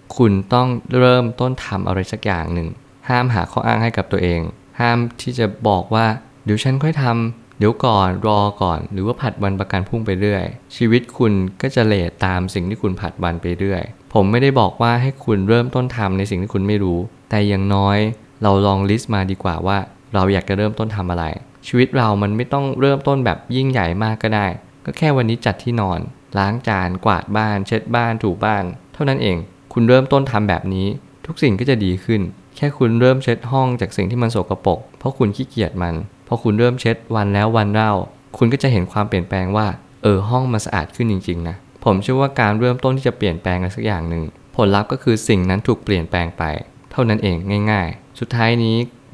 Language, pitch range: Thai, 95-120 Hz